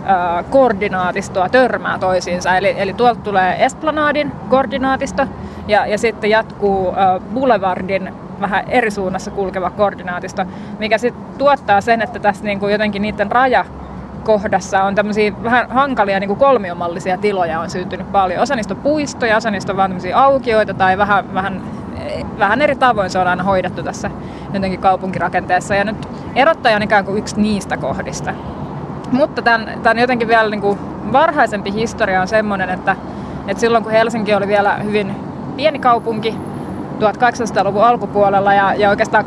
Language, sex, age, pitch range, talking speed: Finnish, female, 20-39, 195-230 Hz, 140 wpm